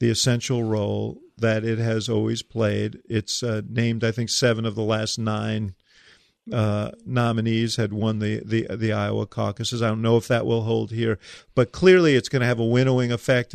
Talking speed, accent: 195 wpm, American